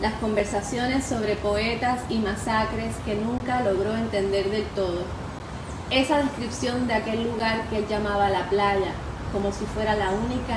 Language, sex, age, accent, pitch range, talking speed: English, female, 20-39, American, 200-250 Hz, 155 wpm